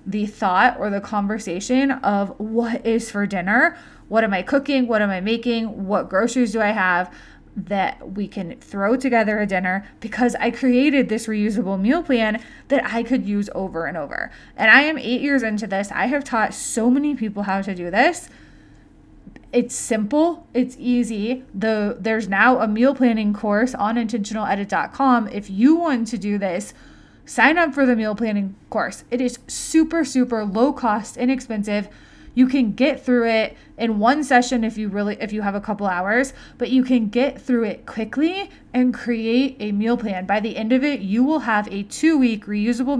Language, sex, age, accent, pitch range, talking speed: English, female, 20-39, American, 205-255 Hz, 185 wpm